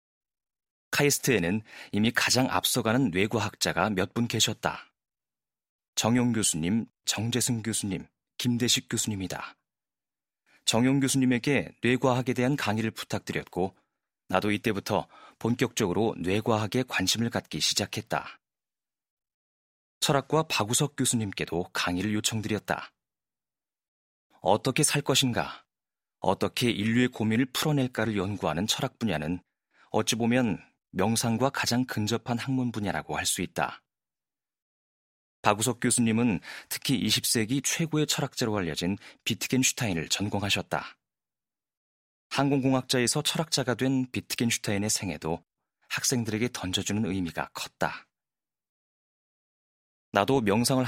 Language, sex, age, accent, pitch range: Korean, male, 30-49, native, 95-130 Hz